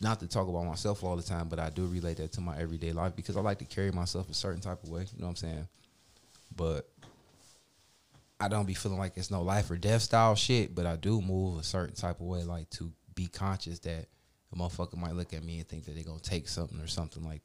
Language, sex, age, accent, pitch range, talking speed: English, male, 20-39, American, 85-105 Hz, 260 wpm